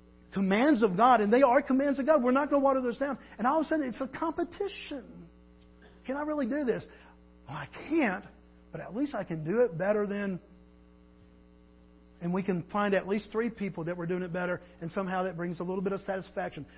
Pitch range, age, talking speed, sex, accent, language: 170-255 Hz, 50-69, 220 wpm, male, American, English